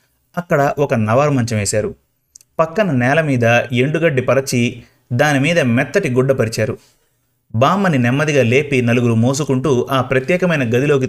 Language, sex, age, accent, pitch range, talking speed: Telugu, male, 30-49, native, 115-135 Hz, 115 wpm